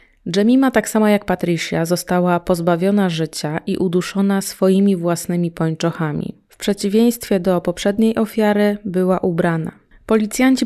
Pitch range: 175-205 Hz